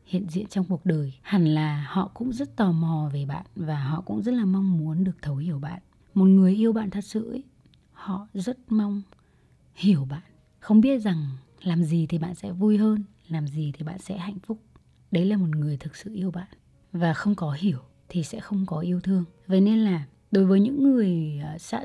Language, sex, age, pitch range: Vietnamese, female, 20-39, 160-210 Hz